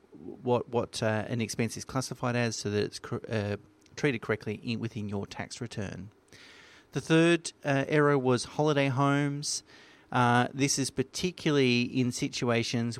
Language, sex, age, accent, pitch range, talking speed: English, male, 30-49, Australian, 110-130 Hz, 150 wpm